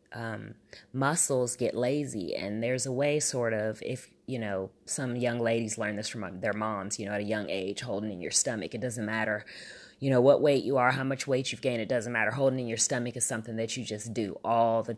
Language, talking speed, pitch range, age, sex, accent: English, 240 wpm, 105-130 Hz, 20-39, female, American